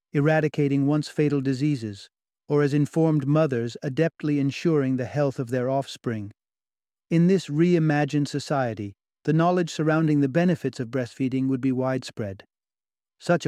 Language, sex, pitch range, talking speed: English, male, 130-165 Hz, 130 wpm